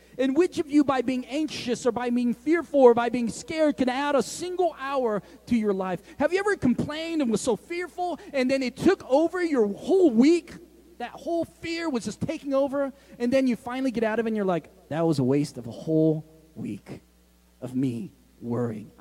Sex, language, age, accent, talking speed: male, English, 30-49, American, 215 wpm